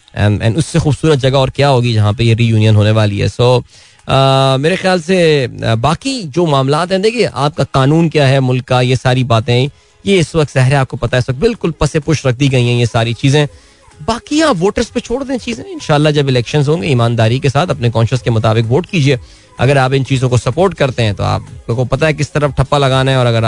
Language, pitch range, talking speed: Hindi, 120-160 Hz, 235 wpm